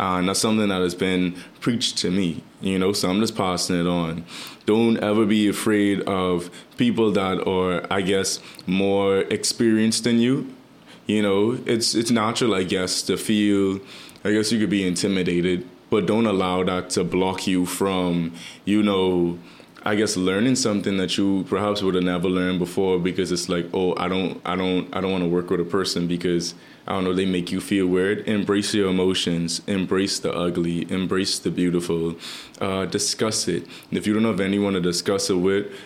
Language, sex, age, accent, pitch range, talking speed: English, male, 20-39, American, 90-105 Hz, 195 wpm